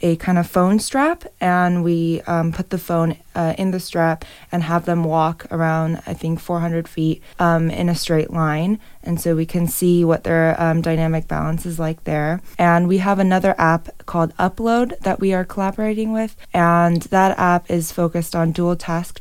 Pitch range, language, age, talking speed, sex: 165-185 Hz, English, 20-39, 190 wpm, female